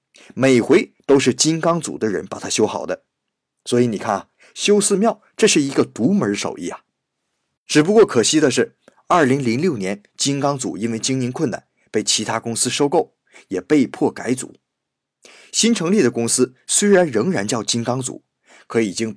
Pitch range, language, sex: 120-190 Hz, Chinese, male